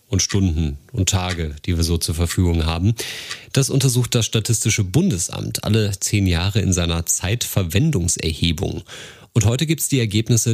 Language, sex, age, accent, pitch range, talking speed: German, male, 40-59, German, 90-120 Hz, 155 wpm